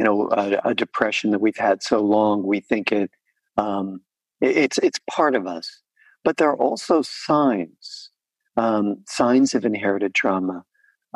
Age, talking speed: 50-69, 165 wpm